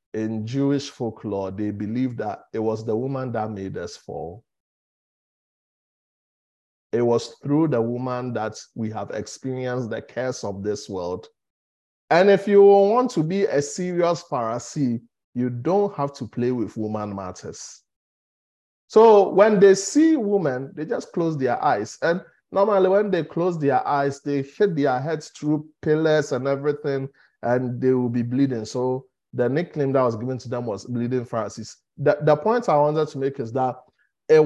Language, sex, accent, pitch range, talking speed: English, male, Nigerian, 120-175 Hz, 165 wpm